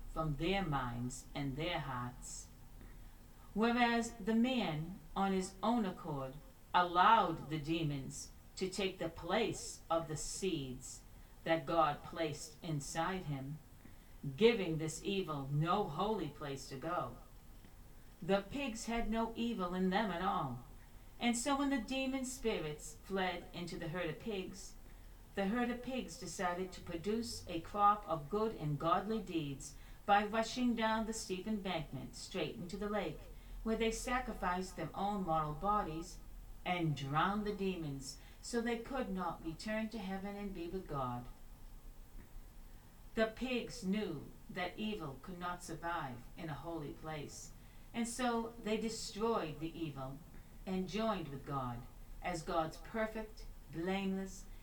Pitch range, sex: 150-215 Hz, female